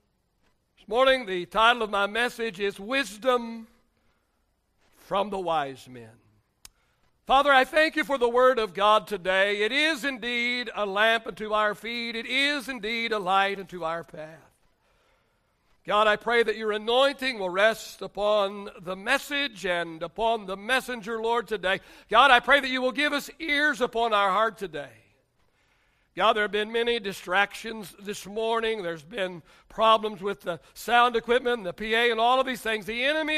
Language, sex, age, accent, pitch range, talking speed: English, male, 60-79, American, 200-255 Hz, 165 wpm